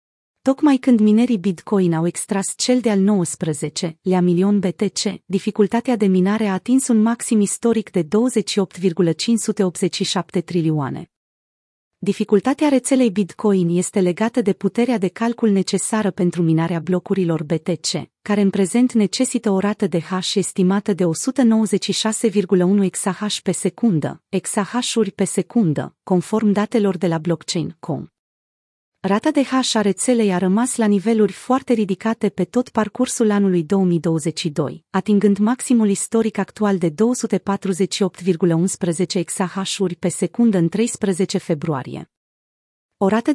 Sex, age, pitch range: female, 30-49, 180-220 Hz